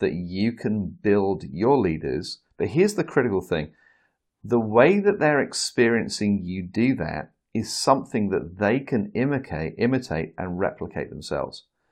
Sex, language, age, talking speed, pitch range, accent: male, English, 40-59, 140 wpm, 90-120 Hz, British